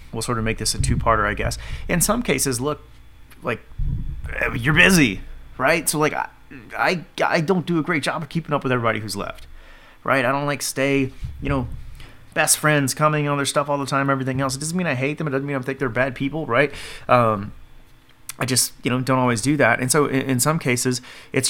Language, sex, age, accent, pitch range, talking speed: English, male, 30-49, American, 125-150 Hz, 230 wpm